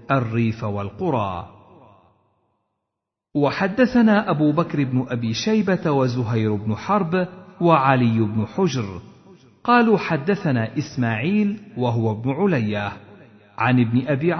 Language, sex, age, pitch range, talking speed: Arabic, male, 50-69, 115-185 Hz, 95 wpm